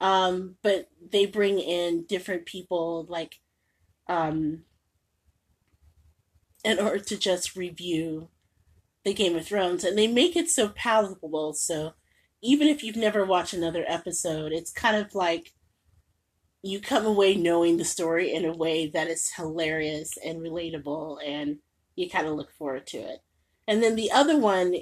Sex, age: female, 30-49